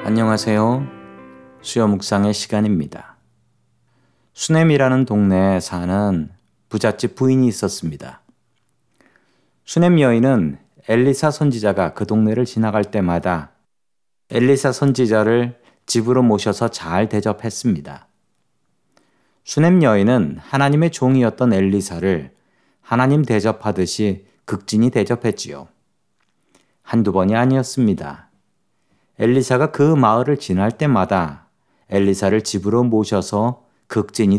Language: Korean